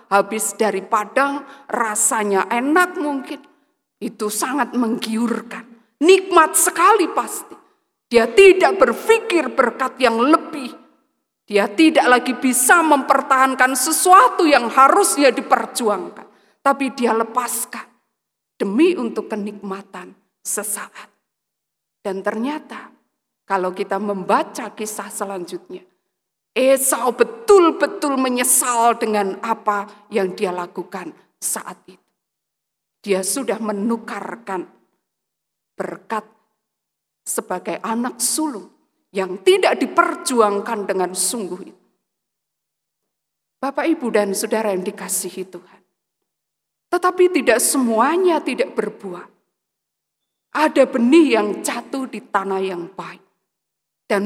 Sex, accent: female, native